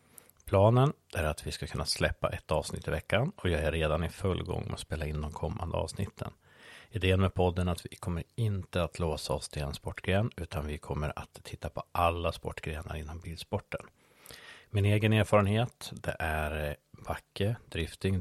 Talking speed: 180 wpm